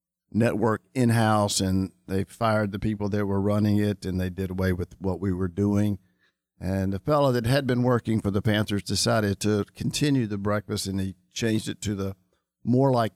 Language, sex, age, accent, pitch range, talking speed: English, male, 50-69, American, 95-110 Hz, 195 wpm